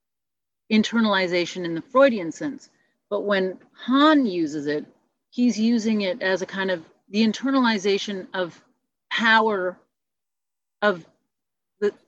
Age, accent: 40-59, American